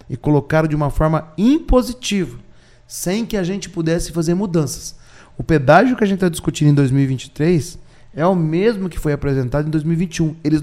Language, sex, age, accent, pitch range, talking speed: Portuguese, male, 30-49, Brazilian, 140-195 Hz, 175 wpm